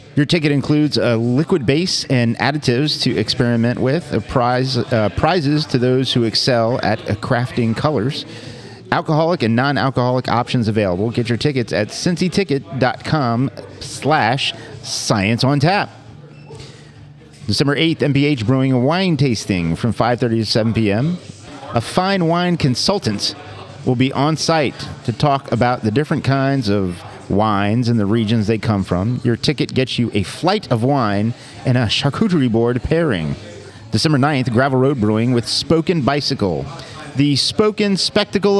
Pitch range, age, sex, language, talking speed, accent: 115-145 Hz, 40-59, male, English, 145 wpm, American